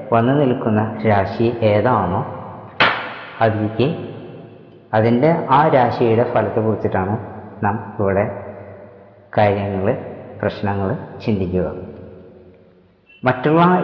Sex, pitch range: female, 100-115 Hz